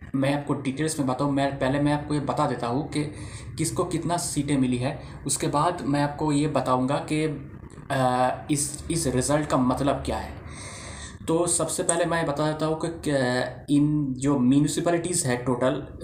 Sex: male